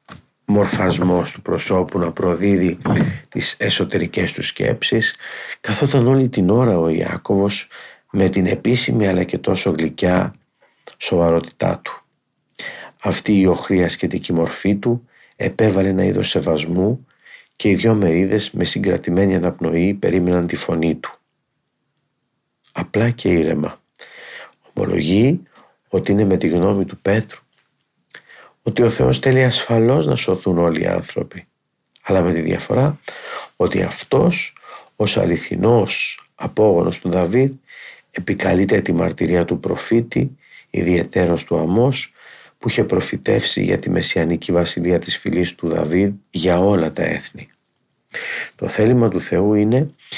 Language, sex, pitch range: Greek, male, 90-110 Hz